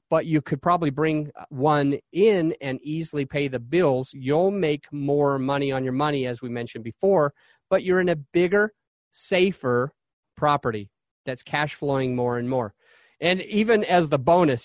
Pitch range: 135-175 Hz